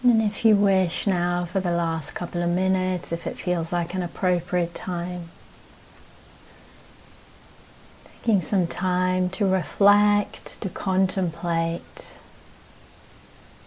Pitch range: 165-185 Hz